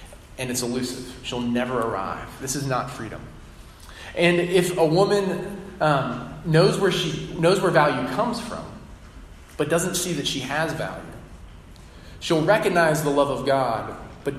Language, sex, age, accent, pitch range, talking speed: English, male, 20-39, American, 110-160 Hz, 155 wpm